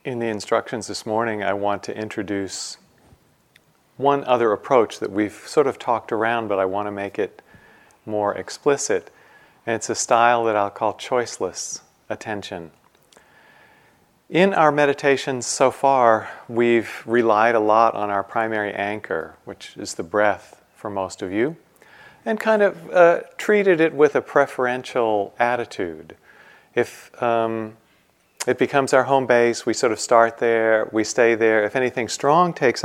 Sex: male